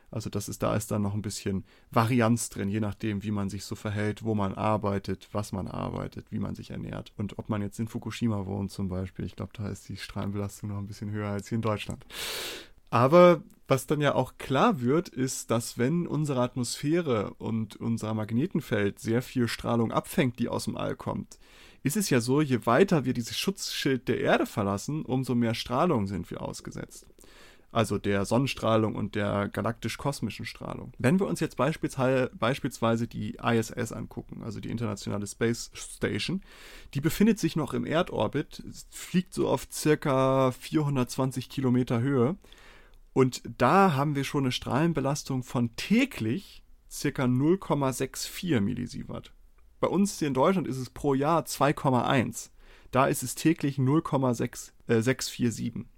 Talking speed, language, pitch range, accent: 165 wpm, German, 110-145 Hz, German